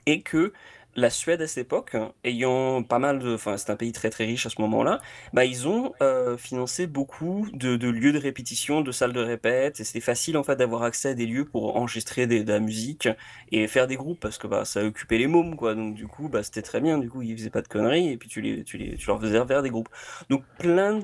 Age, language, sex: 20-39, French, male